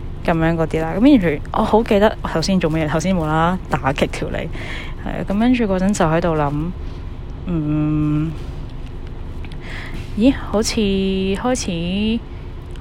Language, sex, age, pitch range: Chinese, female, 10-29, 145-190 Hz